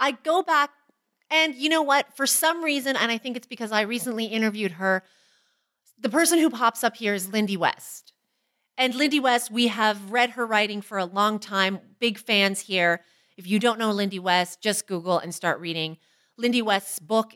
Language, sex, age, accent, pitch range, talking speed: English, female, 30-49, American, 190-240 Hz, 195 wpm